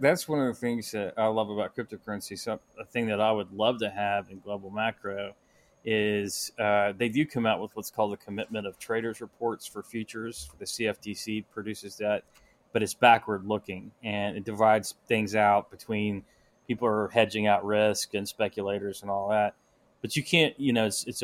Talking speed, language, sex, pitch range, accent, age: 195 wpm, English, male, 100-110 Hz, American, 20-39